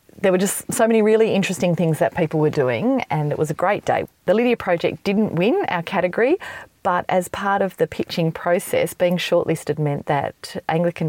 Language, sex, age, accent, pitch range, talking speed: English, female, 30-49, Australian, 150-185 Hz, 200 wpm